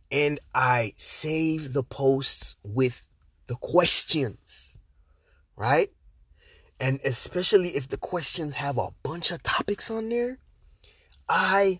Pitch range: 120-185 Hz